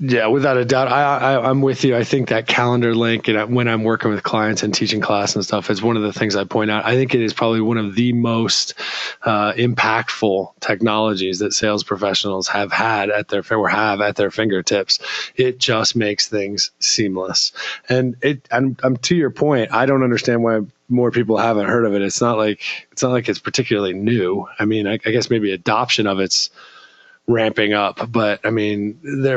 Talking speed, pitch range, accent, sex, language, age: 215 wpm, 105-125 Hz, American, male, English, 20-39